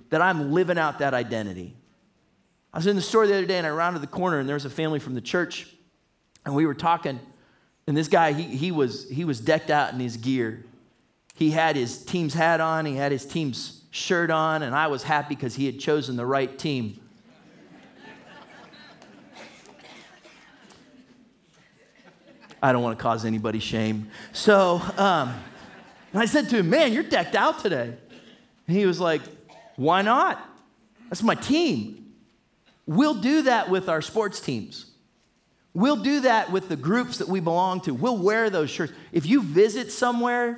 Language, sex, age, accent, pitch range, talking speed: English, male, 30-49, American, 150-215 Hz, 175 wpm